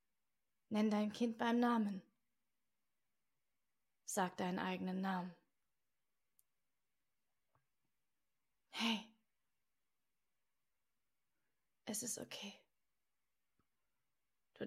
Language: German